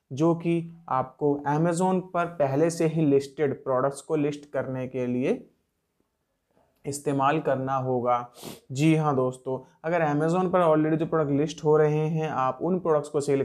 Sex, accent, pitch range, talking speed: male, native, 130-160 Hz, 160 wpm